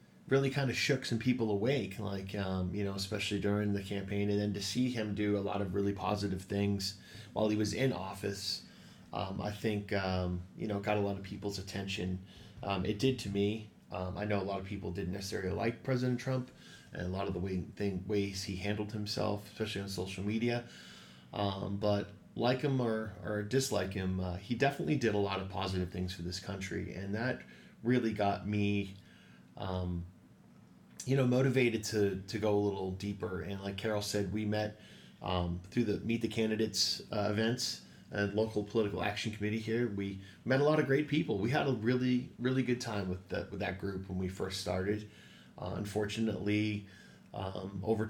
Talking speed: 195 wpm